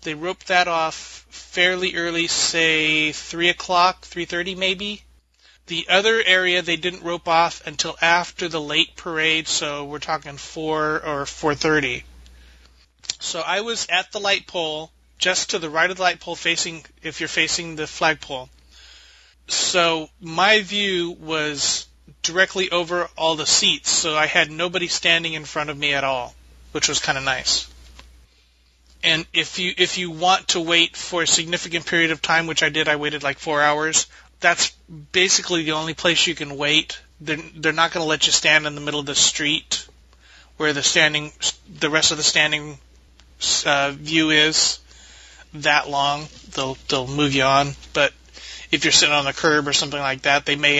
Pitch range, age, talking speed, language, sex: 145-170 Hz, 30-49, 175 wpm, English, male